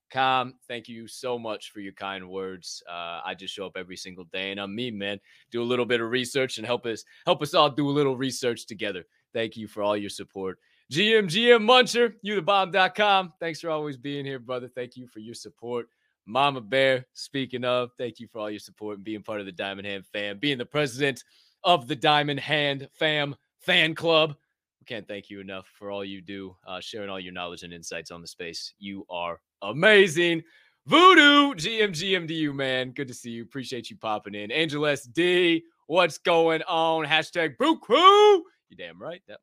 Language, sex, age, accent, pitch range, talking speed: English, male, 20-39, American, 115-175 Hz, 200 wpm